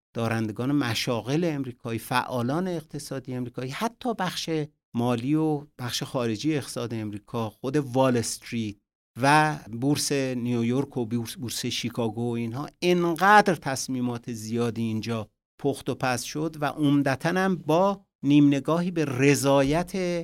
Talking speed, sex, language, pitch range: 120 wpm, male, Persian, 115-155 Hz